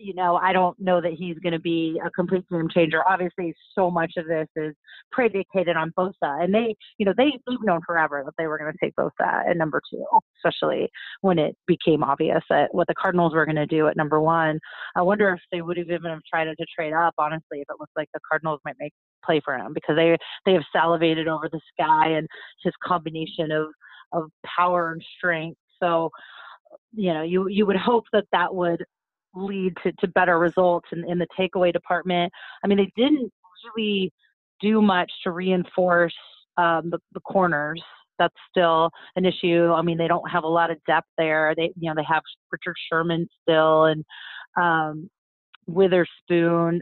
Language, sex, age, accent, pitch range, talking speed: English, female, 30-49, American, 160-185 Hz, 200 wpm